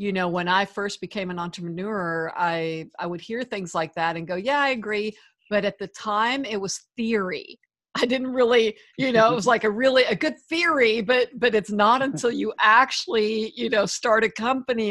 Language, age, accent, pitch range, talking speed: English, 50-69, American, 190-230 Hz, 210 wpm